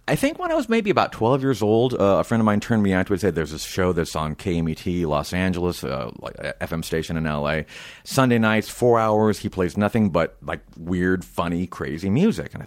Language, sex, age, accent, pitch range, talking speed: English, male, 40-59, American, 85-105 Hz, 225 wpm